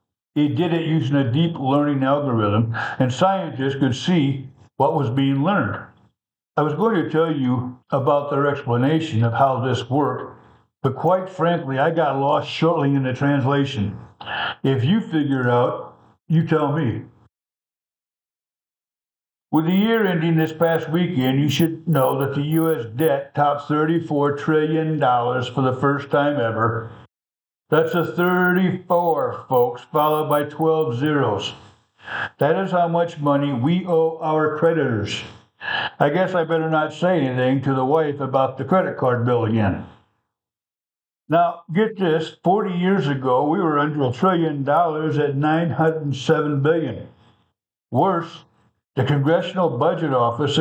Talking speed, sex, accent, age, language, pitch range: 145 wpm, male, American, 60-79, English, 130-160 Hz